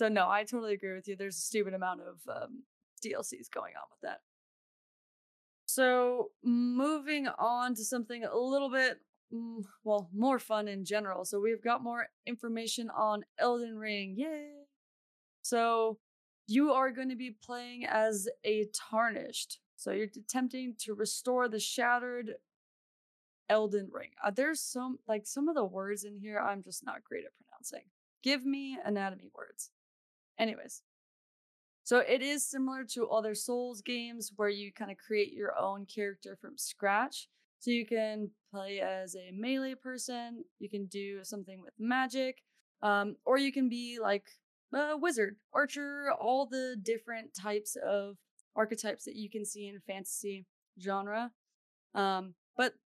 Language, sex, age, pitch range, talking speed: English, female, 20-39, 205-255 Hz, 155 wpm